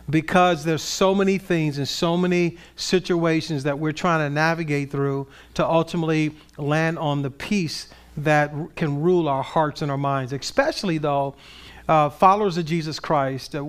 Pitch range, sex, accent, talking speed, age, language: 145-180 Hz, male, American, 160 wpm, 50-69, English